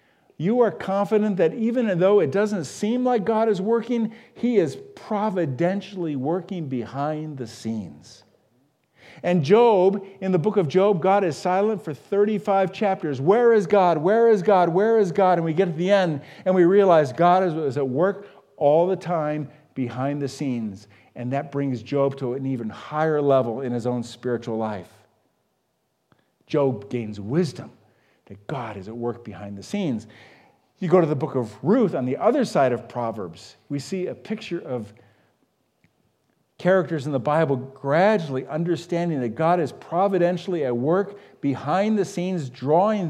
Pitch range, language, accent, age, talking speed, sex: 135-200 Hz, English, American, 50-69, 165 wpm, male